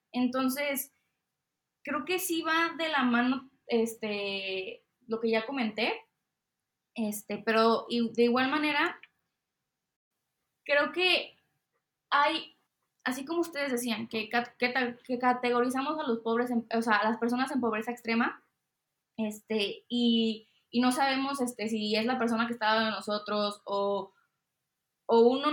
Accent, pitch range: Mexican, 220-265 Hz